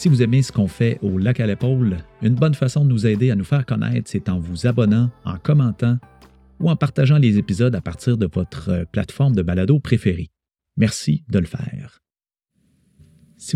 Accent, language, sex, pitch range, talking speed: Canadian, French, male, 100-130 Hz, 195 wpm